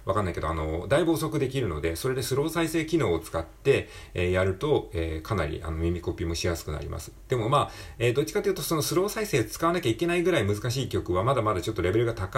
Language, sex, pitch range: Japanese, male, 85-135 Hz